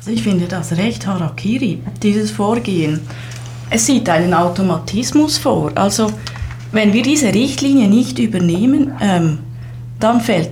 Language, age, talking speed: English, 30-49, 120 wpm